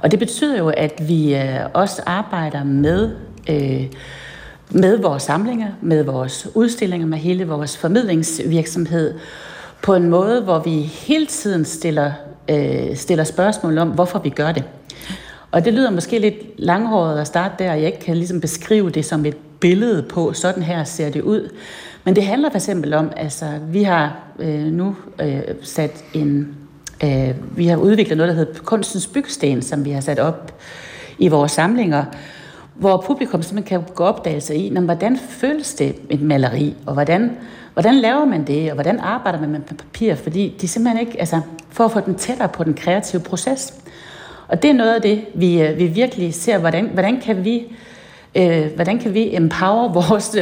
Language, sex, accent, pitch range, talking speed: Danish, female, native, 155-210 Hz, 175 wpm